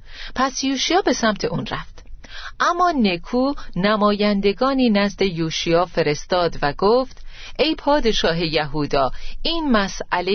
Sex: female